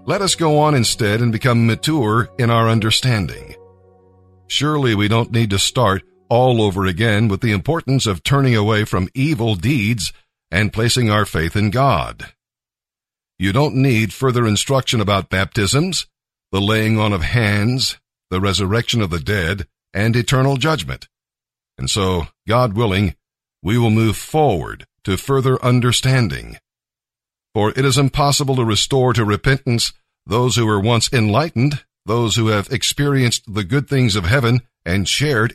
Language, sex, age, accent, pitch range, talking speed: English, male, 50-69, American, 105-130 Hz, 150 wpm